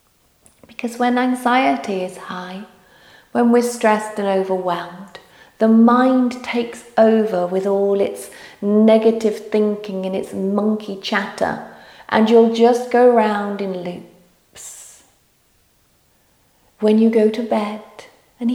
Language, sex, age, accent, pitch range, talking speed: English, female, 40-59, British, 180-225 Hz, 115 wpm